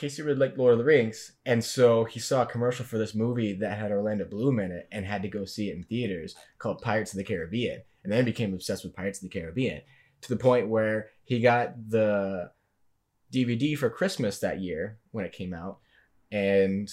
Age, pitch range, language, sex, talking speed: 20-39, 100-120 Hz, English, male, 215 wpm